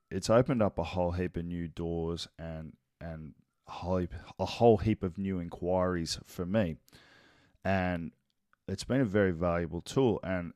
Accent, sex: Australian, male